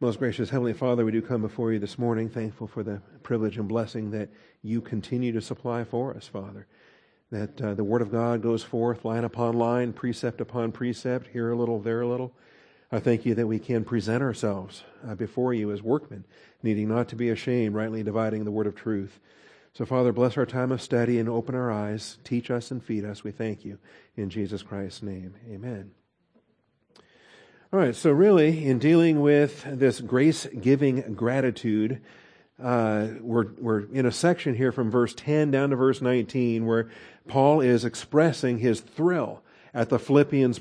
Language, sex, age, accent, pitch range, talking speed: English, male, 50-69, American, 115-130 Hz, 185 wpm